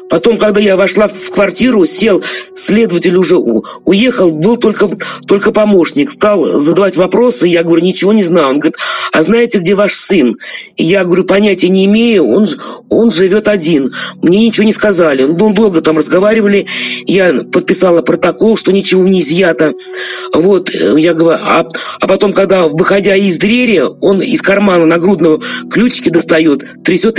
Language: Russian